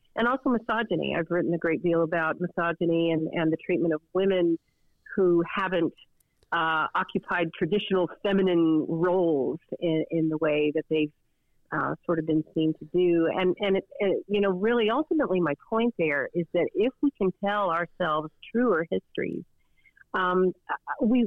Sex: female